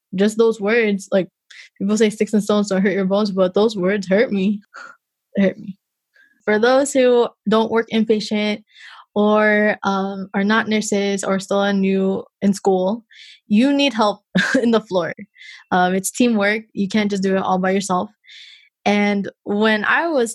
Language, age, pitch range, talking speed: English, 20-39, 195-225 Hz, 175 wpm